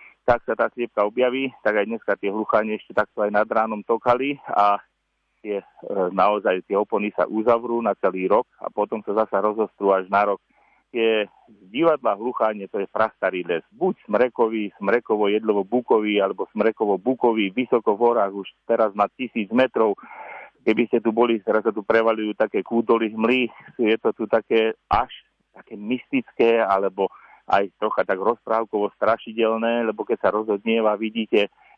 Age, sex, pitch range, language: 40-59, male, 105-120 Hz, Slovak